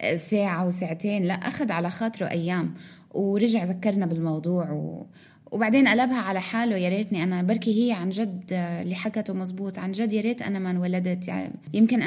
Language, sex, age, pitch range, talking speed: Arabic, female, 20-39, 175-220 Hz, 160 wpm